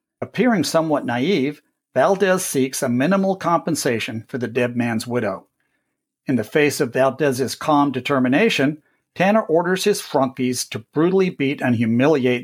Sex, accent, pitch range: male, American, 130-165 Hz